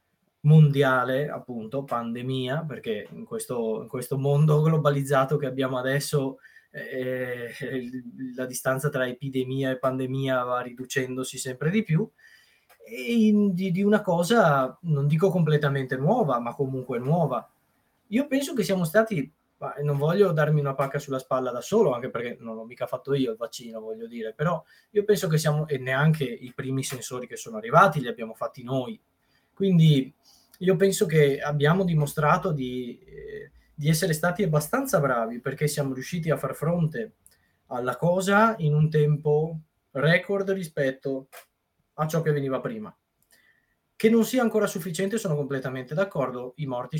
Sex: male